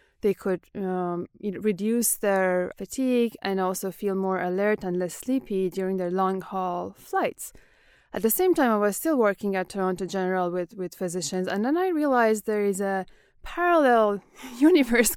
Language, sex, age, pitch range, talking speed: English, female, 20-39, 190-230 Hz, 160 wpm